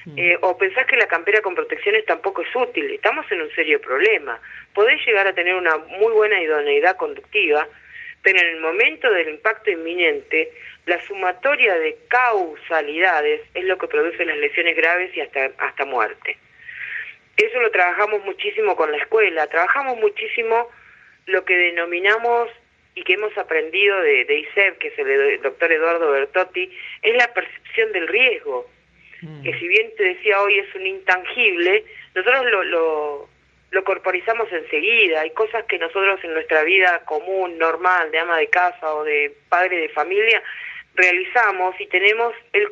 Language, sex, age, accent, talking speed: Spanish, female, 40-59, Argentinian, 160 wpm